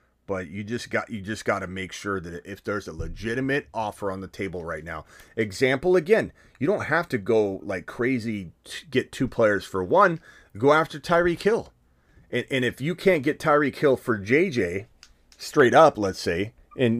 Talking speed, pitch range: 190 wpm, 90-125 Hz